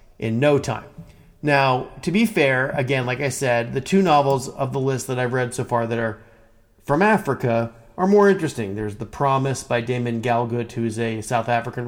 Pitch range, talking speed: 115-135 Hz, 195 wpm